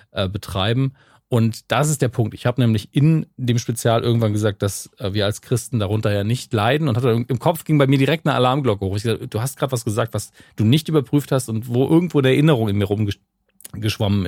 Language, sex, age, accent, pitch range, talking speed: German, male, 40-59, German, 100-130 Hz, 225 wpm